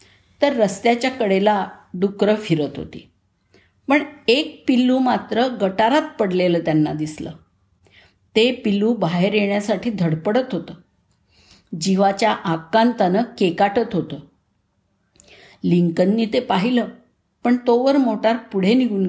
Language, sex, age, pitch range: Marathi, female, 50-69, 165-225 Hz